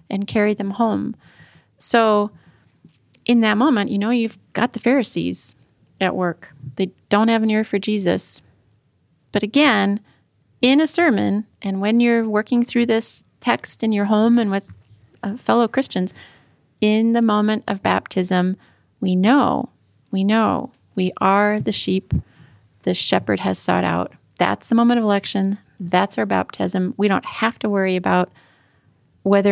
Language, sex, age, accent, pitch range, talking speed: English, female, 30-49, American, 175-215 Hz, 155 wpm